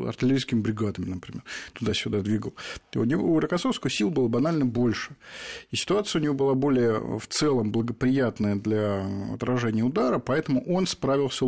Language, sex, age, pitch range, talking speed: Russian, male, 50-69, 115-135 Hz, 145 wpm